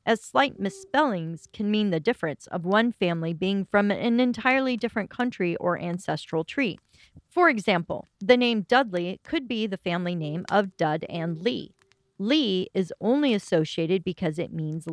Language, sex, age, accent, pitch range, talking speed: English, female, 40-59, American, 175-230 Hz, 160 wpm